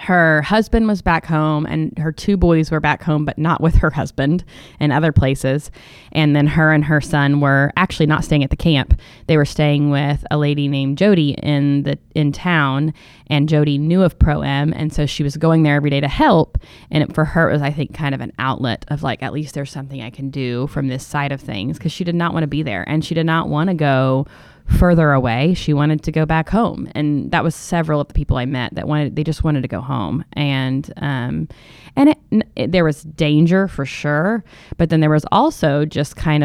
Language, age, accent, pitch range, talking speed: English, 20-39, American, 140-160 Hz, 235 wpm